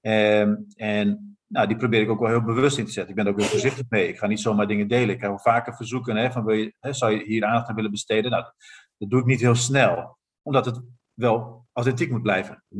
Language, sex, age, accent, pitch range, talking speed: Dutch, male, 40-59, Dutch, 110-130 Hz, 265 wpm